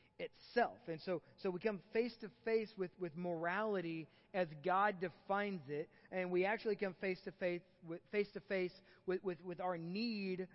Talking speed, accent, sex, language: 140 wpm, American, male, English